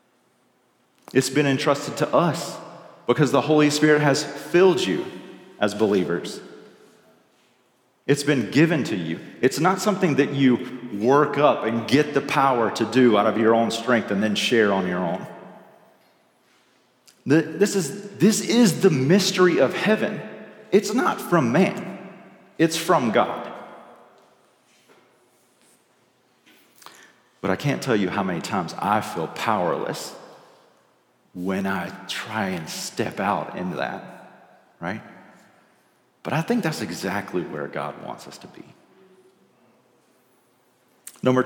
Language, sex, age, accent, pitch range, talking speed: English, male, 40-59, American, 120-155 Hz, 130 wpm